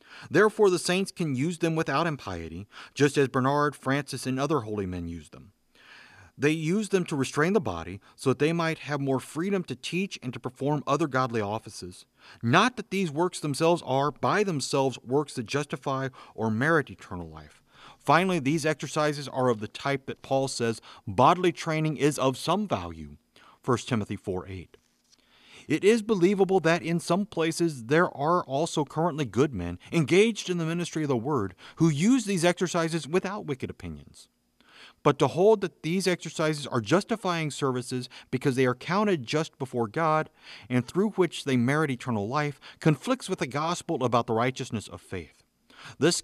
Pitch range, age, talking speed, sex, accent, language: 125-170 Hz, 40-59, 175 wpm, male, American, English